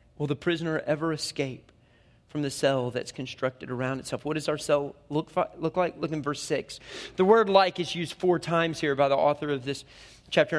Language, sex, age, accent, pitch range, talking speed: English, male, 30-49, American, 145-210 Hz, 210 wpm